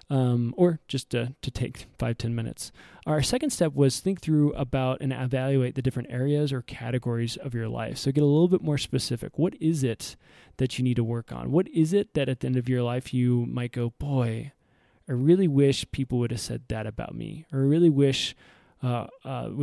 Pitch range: 120-145 Hz